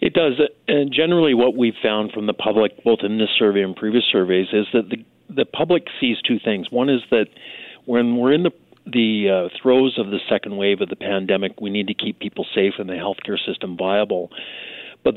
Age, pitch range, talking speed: 50-69, 100-115 Hz, 215 wpm